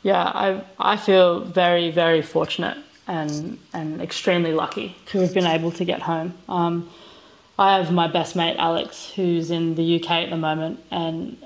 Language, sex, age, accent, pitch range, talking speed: English, female, 20-39, Australian, 165-185 Hz, 175 wpm